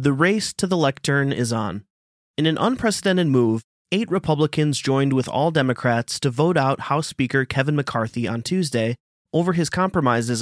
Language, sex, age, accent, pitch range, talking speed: English, male, 30-49, American, 120-165 Hz, 165 wpm